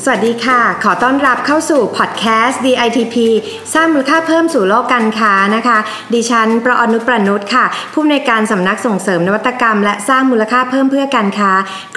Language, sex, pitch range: Thai, female, 210-255 Hz